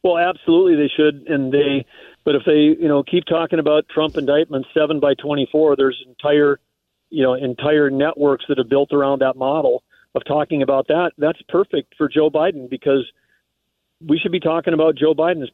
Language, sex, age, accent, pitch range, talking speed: English, male, 50-69, American, 140-160 Hz, 185 wpm